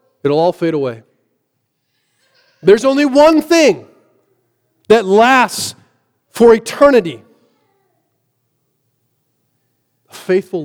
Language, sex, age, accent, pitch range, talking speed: English, male, 40-59, American, 130-160 Hz, 75 wpm